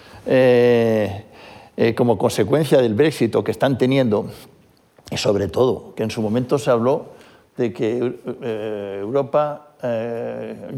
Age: 60-79